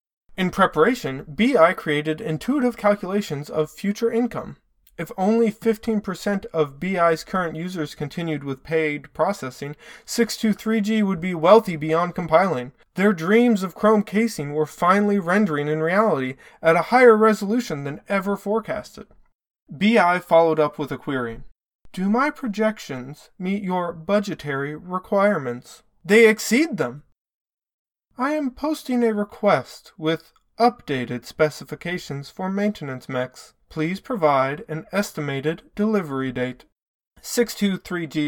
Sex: male